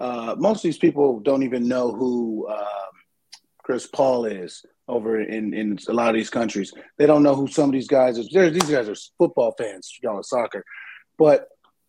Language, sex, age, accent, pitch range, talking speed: English, male, 30-49, American, 120-170 Hz, 190 wpm